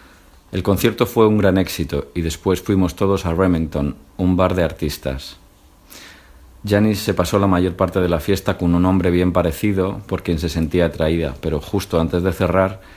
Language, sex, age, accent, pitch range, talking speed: Spanish, male, 50-69, Spanish, 80-95 Hz, 185 wpm